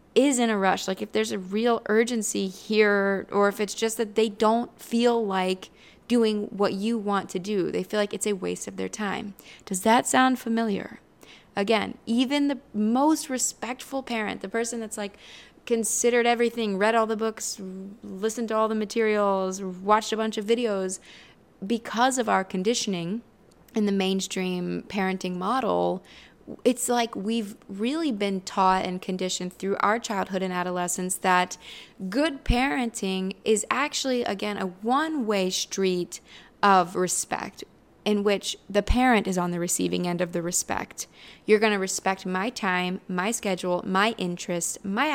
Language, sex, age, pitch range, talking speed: English, female, 20-39, 190-230 Hz, 160 wpm